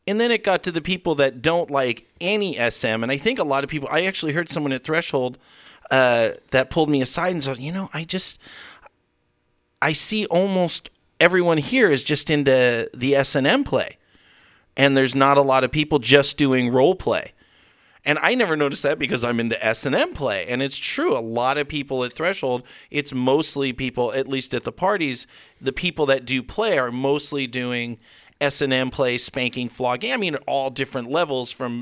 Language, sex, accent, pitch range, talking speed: English, male, American, 125-150 Hz, 195 wpm